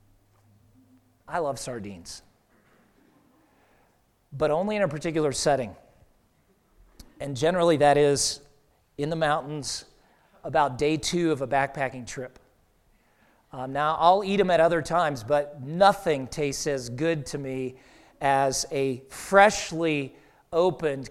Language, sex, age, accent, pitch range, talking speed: English, male, 40-59, American, 130-160 Hz, 120 wpm